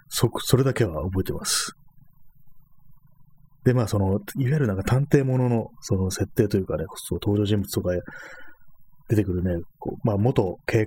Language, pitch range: Japanese, 95-130 Hz